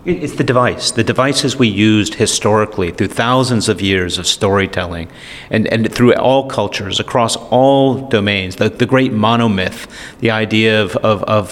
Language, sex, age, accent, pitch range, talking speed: English, male, 40-59, American, 100-120 Hz, 160 wpm